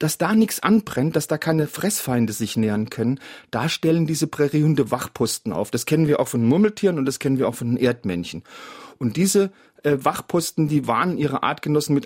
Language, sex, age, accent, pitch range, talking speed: German, male, 40-59, German, 125-180 Hz, 195 wpm